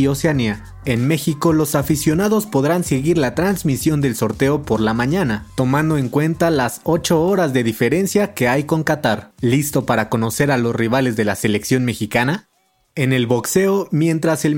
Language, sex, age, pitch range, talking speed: Spanish, male, 30-49, 125-165 Hz, 170 wpm